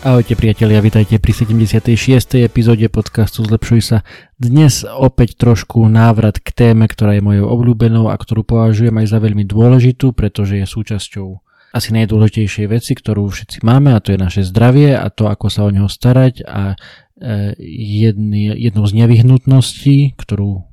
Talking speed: 155 wpm